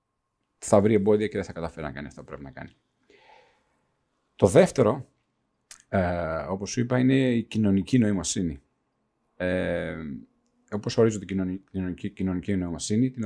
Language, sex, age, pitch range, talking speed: Greek, male, 40-59, 85-115 Hz, 140 wpm